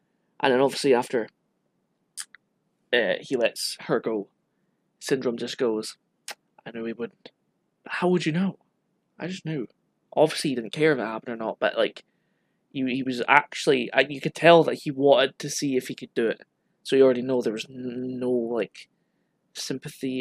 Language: English